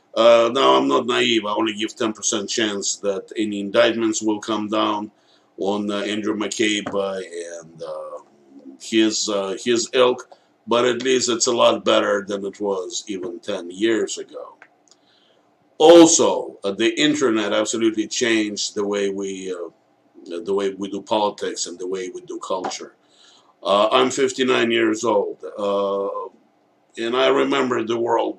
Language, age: English, 50-69